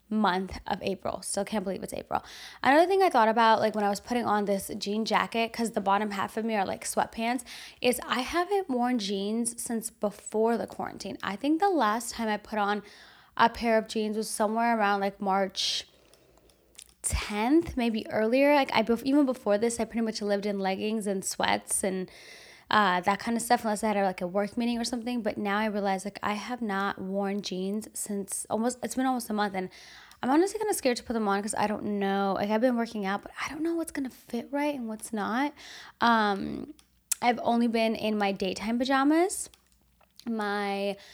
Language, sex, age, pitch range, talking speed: English, female, 10-29, 200-240 Hz, 210 wpm